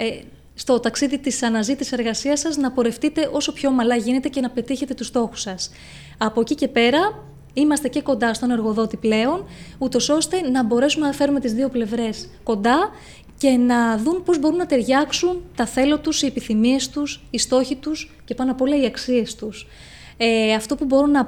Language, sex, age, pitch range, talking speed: Greek, female, 20-39, 230-280 Hz, 185 wpm